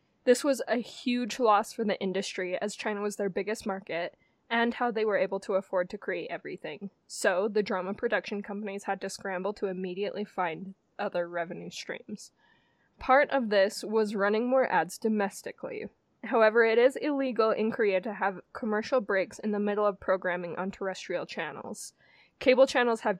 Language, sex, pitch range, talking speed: English, female, 190-225 Hz, 175 wpm